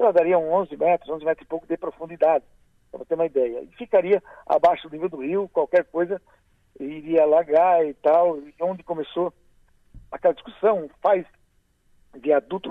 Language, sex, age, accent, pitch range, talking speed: Portuguese, male, 60-79, Brazilian, 145-195 Hz, 160 wpm